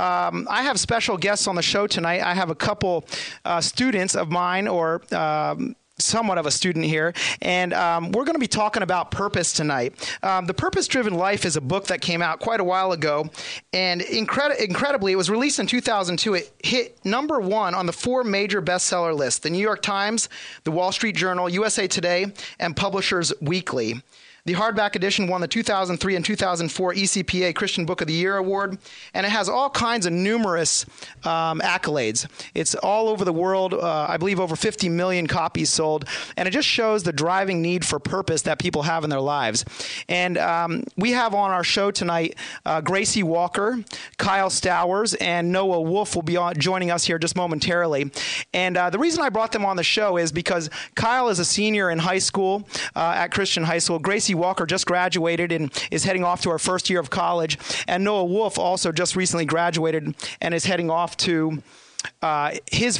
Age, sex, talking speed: 30-49, male, 195 wpm